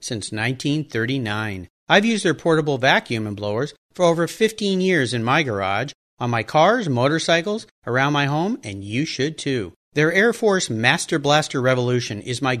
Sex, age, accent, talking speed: male, 40-59, American, 165 wpm